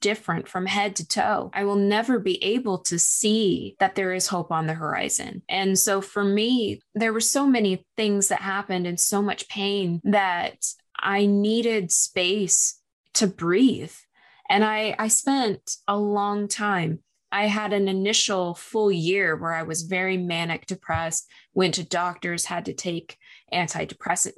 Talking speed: 160 wpm